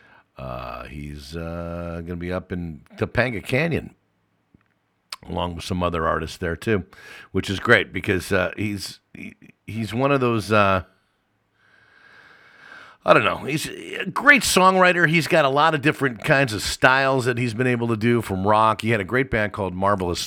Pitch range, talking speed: 85-105 Hz, 175 wpm